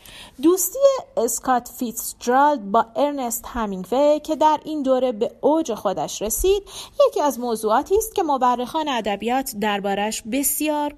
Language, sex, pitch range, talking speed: Persian, female, 220-290 Hz, 130 wpm